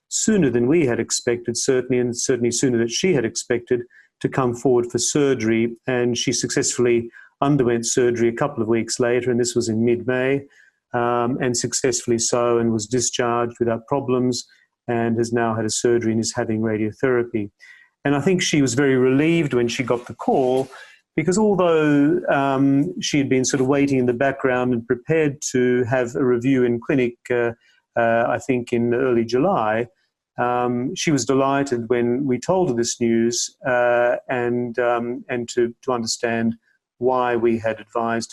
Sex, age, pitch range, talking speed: male, 40-59, 120-135 Hz, 175 wpm